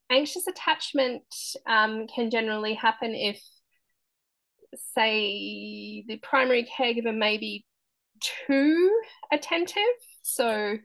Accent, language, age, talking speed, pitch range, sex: Australian, English, 10-29, 90 wpm, 185-250 Hz, female